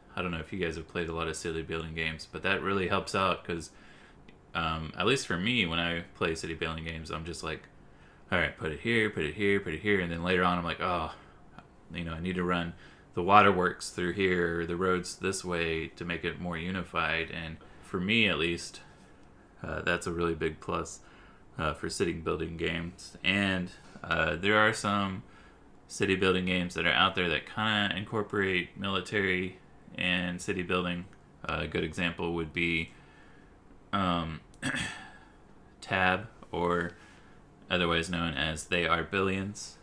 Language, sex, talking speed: English, male, 180 wpm